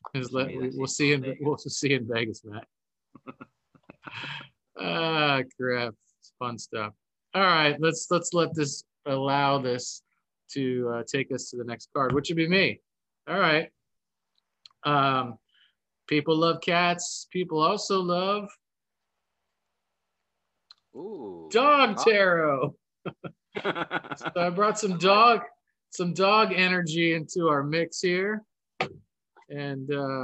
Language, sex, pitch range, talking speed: English, male, 130-175 Hz, 110 wpm